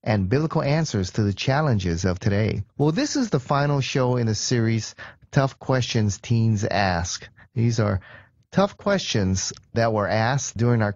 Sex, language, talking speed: male, English, 165 wpm